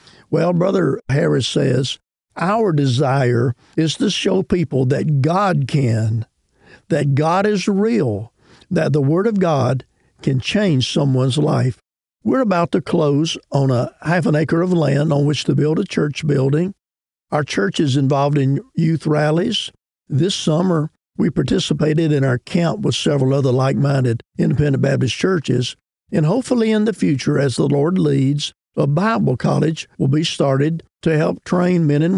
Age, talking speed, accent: 50-69, 160 wpm, American